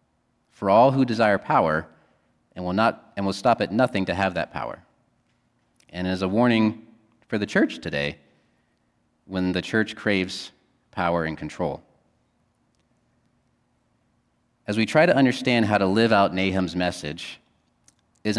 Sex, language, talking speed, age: male, English, 145 wpm, 30-49